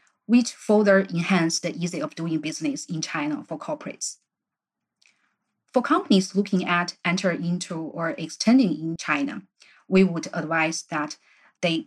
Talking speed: 135 wpm